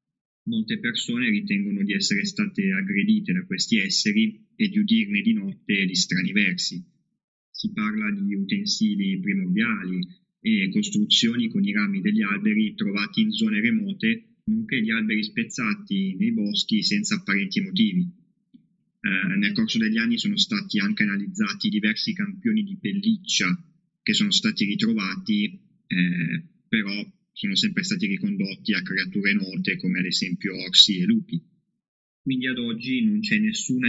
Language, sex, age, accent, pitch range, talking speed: Italian, male, 20-39, native, 195-220 Hz, 145 wpm